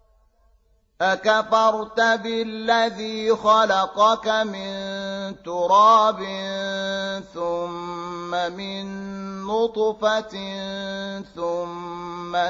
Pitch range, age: 175-220 Hz, 30-49